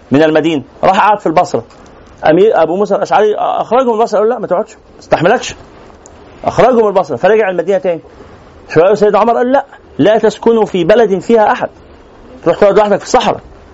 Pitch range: 160-220 Hz